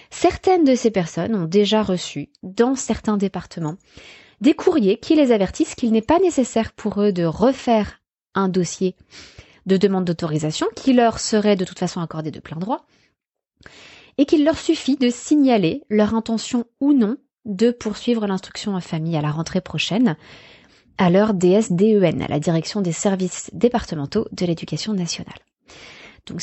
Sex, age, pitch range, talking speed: female, 20-39, 175-235 Hz, 160 wpm